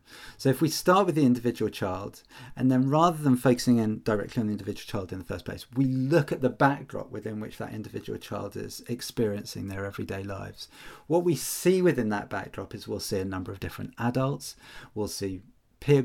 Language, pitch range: English, 110-140 Hz